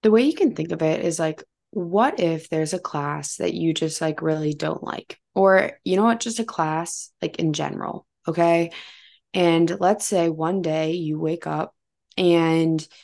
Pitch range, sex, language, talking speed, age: 160-185 Hz, female, English, 190 wpm, 20-39